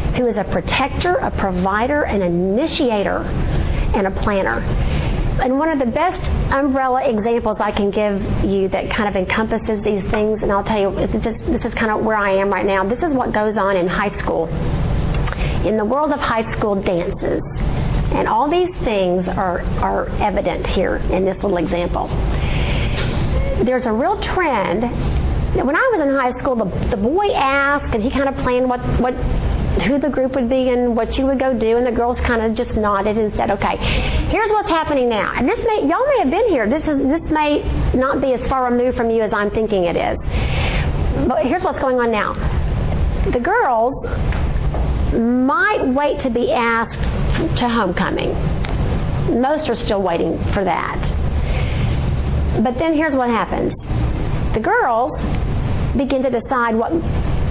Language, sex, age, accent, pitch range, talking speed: English, female, 40-59, American, 195-270 Hz, 175 wpm